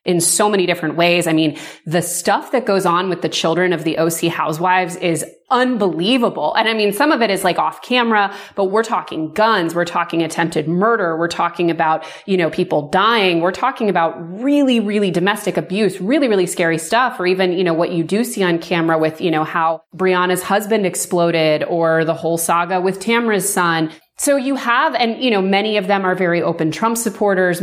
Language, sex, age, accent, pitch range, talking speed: English, female, 30-49, American, 165-190 Hz, 205 wpm